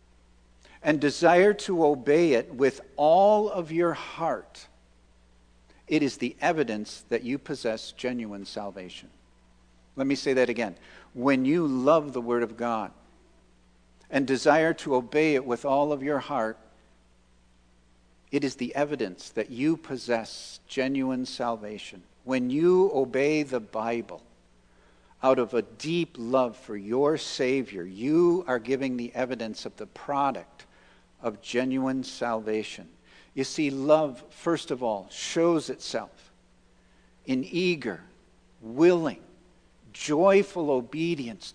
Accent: American